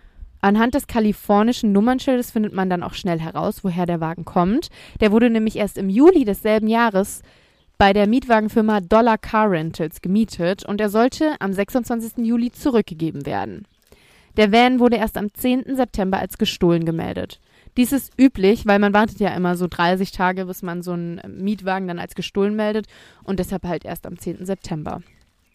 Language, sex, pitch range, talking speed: German, female, 185-230 Hz, 175 wpm